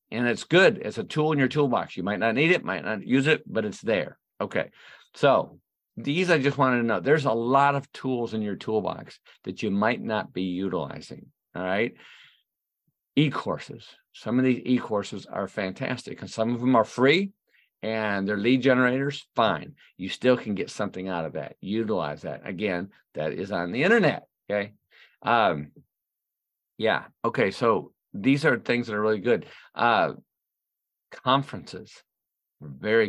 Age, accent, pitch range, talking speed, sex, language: 50-69, American, 100-140 Hz, 170 wpm, male, English